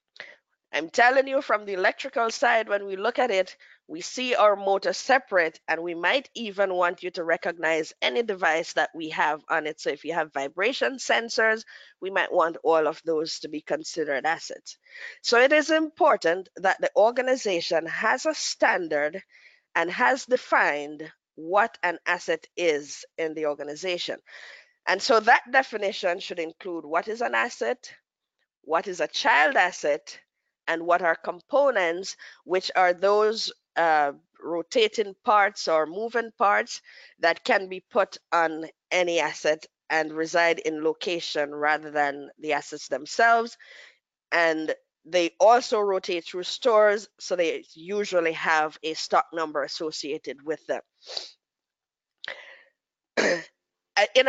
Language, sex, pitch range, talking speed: English, female, 165-255 Hz, 145 wpm